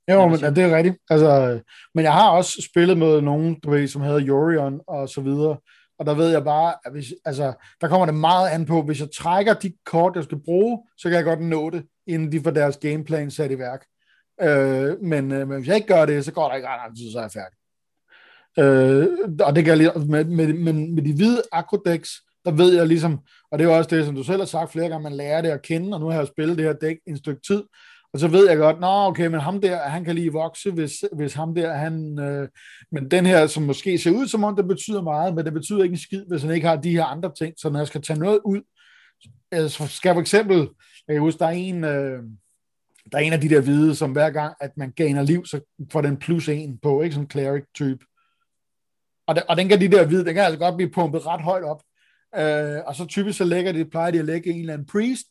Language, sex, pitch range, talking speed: Danish, male, 150-175 Hz, 255 wpm